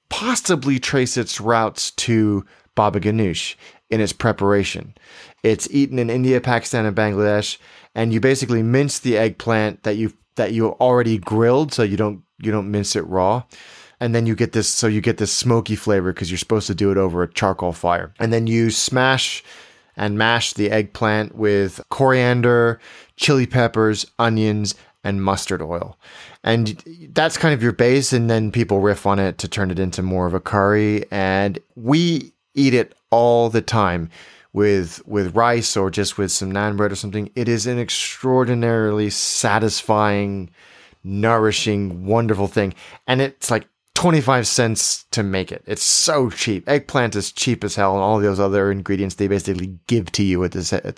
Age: 30-49